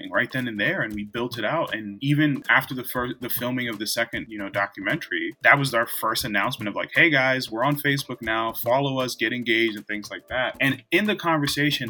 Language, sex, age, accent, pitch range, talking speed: English, male, 20-39, American, 110-135 Hz, 235 wpm